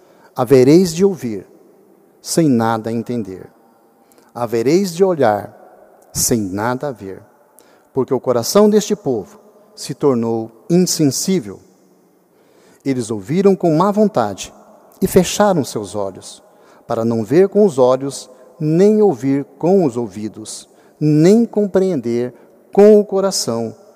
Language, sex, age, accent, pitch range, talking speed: Portuguese, male, 60-79, Brazilian, 120-185 Hz, 115 wpm